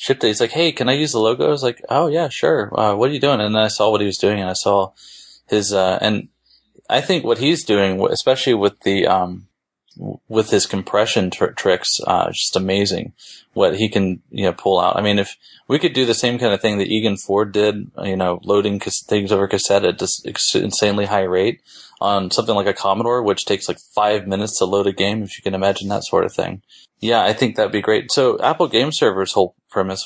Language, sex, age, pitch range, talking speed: English, male, 20-39, 95-110 Hz, 235 wpm